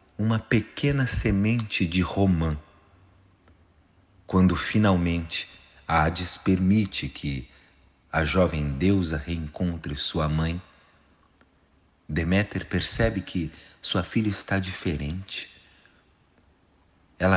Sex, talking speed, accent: male, 85 wpm, Brazilian